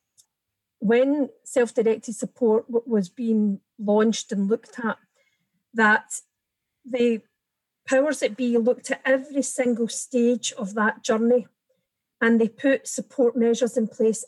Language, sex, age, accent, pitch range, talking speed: English, female, 40-59, British, 210-245 Hz, 120 wpm